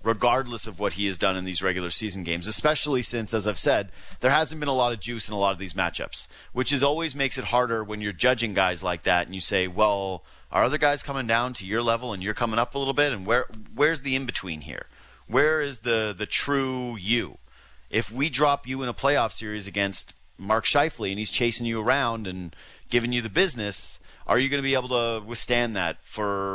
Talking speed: 235 wpm